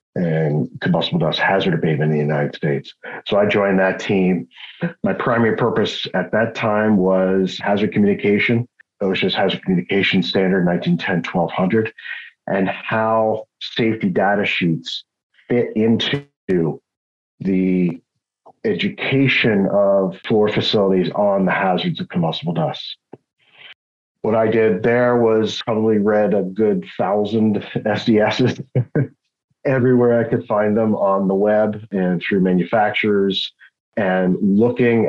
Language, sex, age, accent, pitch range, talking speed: English, male, 50-69, American, 90-110 Hz, 120 wpm